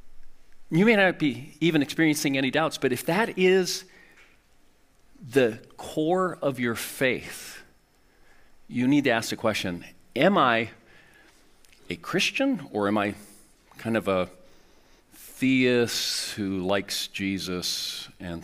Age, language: 40-59, English